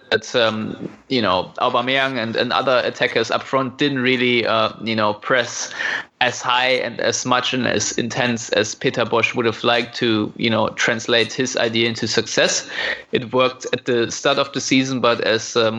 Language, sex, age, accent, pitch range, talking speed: English, male, 20-39, German, 115-130 Hz, 190 wpm